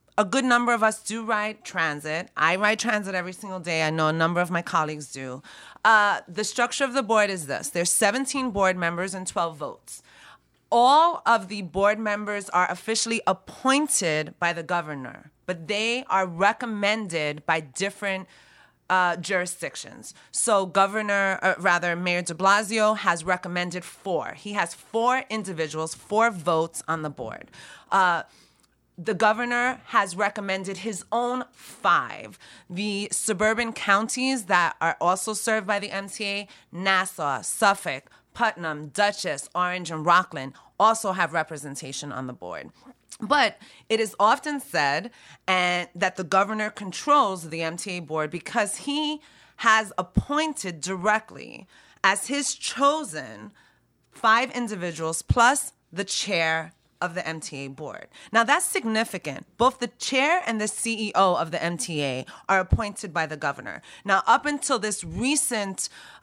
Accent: American